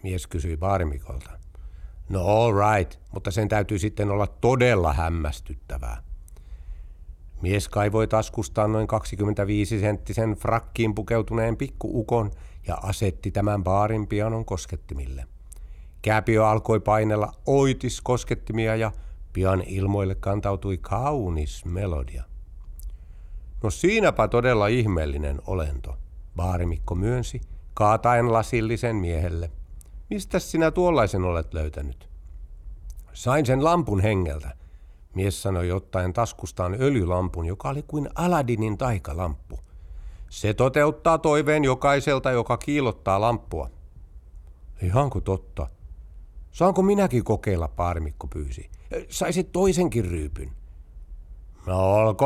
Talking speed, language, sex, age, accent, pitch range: 100 wpm, Finnish, male, 60-79, native, 80-110 Hz